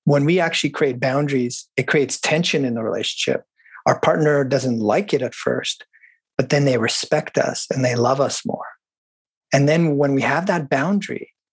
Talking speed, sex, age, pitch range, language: 180 wpm, male, 30-49, 130-150 Hz, English